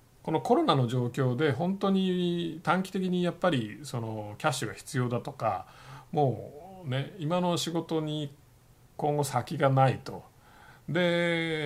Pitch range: 120-160 Hz